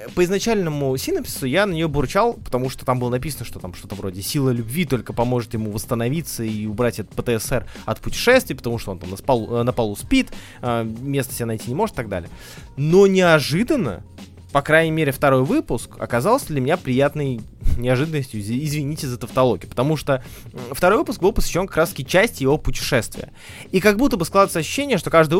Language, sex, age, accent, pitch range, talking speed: Russian, male, 20-39, native, 115-160 Hz, 185 wpm